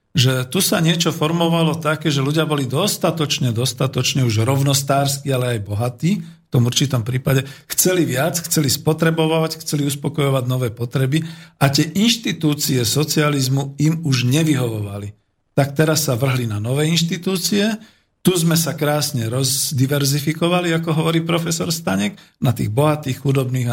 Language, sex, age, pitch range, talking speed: Slovak, male, 50-69, 120-150 Hz, 140 wpm